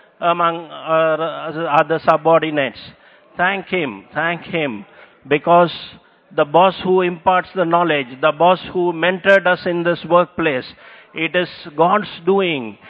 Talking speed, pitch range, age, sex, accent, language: 120 wpm, 160-195 Hz, 50-69, male, Indian, English